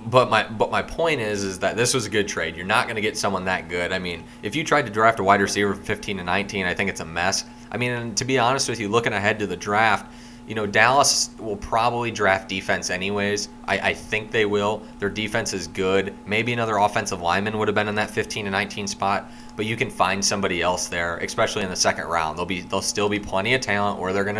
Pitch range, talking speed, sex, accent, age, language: 100-120 Hz, 260 wpm, male, American, 20-39, English